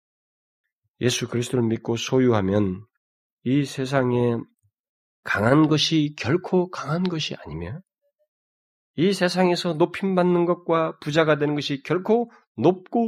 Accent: native